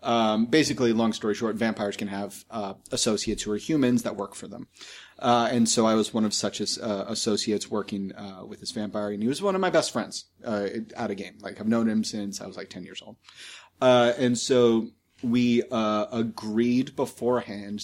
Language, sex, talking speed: English, male, 210 wpm